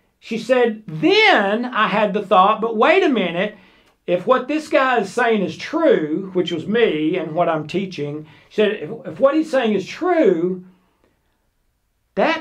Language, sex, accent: English, male, American